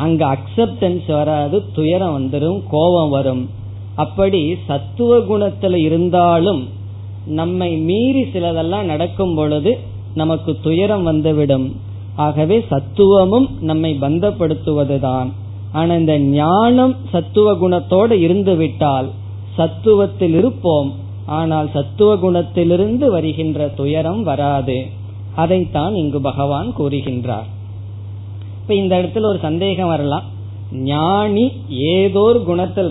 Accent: native